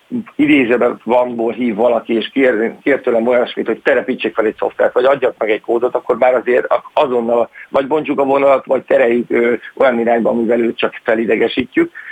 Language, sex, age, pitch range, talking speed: Hungarian, male, 50-69, 120-145 Hz, 175 wpm